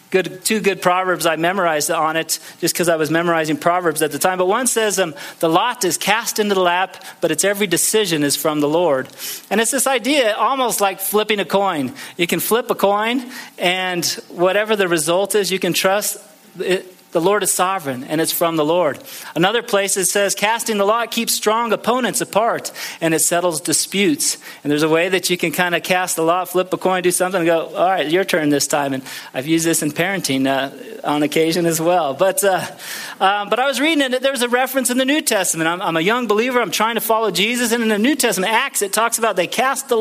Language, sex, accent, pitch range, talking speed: English, male, American, 170-215 Hz, 230 wpm